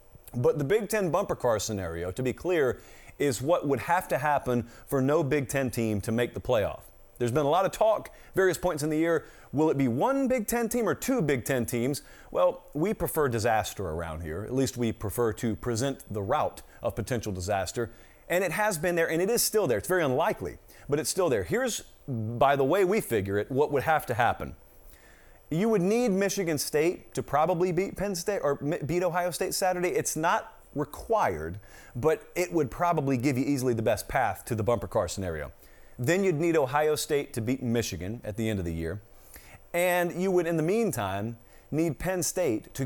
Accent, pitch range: American, 115-170 Hz